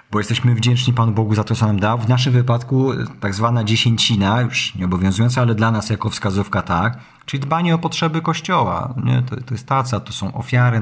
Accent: native